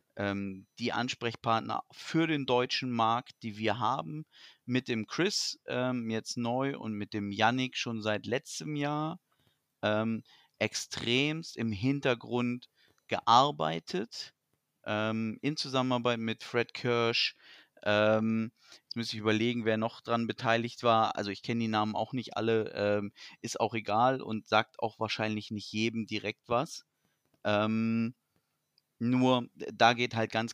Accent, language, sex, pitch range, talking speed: German, German, male, 110-125 Hz, 140 wpm